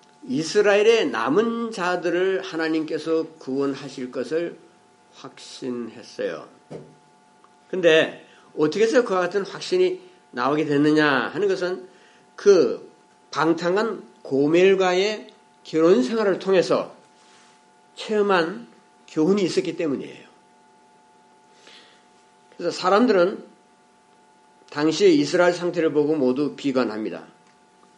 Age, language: 50-69, Korean